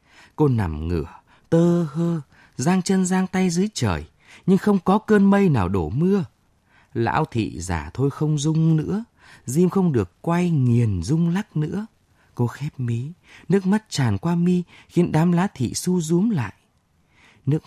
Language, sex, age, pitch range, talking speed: Vietnamese, male, 20-39, 100-160 Hz, 170 wpm